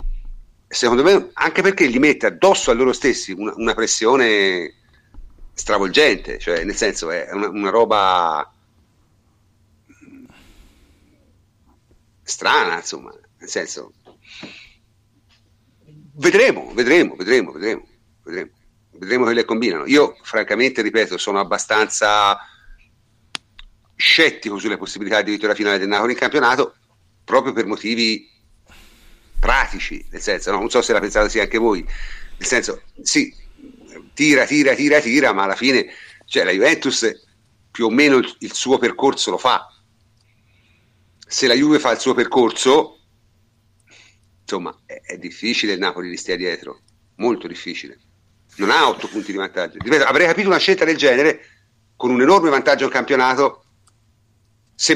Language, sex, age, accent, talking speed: Italian, male, 50-69, native, 135 wpm